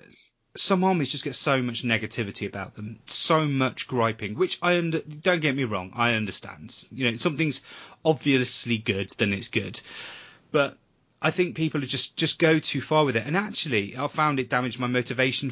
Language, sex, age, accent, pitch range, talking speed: English, male, 30-49, British, 115-145 Hz, 185 wpm